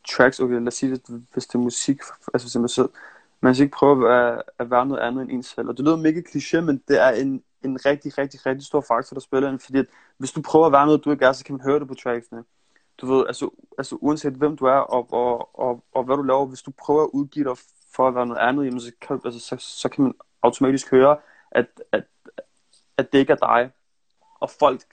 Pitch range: 120-140 Hz